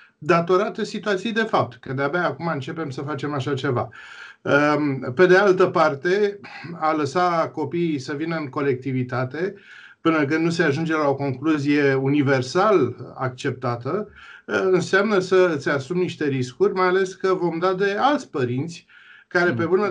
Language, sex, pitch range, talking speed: Romanian, male, 140-185 Hz, 150 wpm